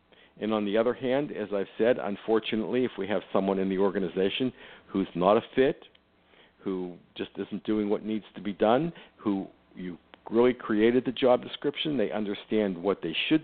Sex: male